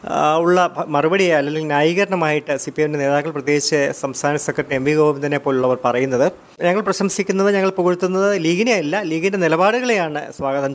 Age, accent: 30-49, native